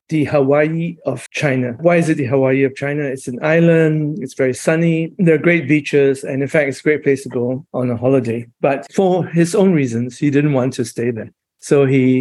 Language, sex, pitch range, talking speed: English, male, 130-160 Hz, 225 wpm